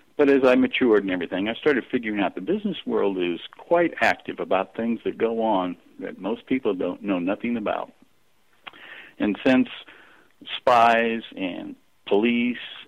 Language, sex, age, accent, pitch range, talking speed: English, male, 60-79, American, 95-145 Hz, 155 wpm